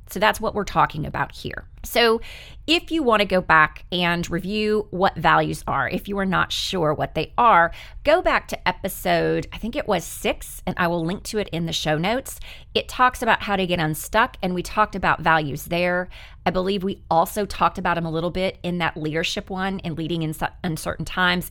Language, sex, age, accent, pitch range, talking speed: English, female, 30-49, American, 160-210 Hz, 220 wpm